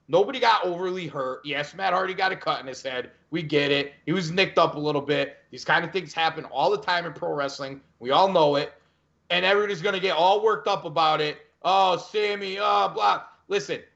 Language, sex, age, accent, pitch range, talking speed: English, male, 30-49, American, 170-225 Hz, 230 wpm